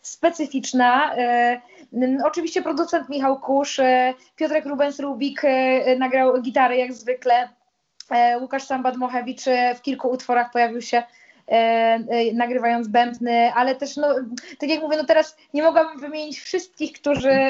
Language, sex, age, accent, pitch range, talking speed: Polish, female, 20-39, native, 240-275 Hz, 135 wpm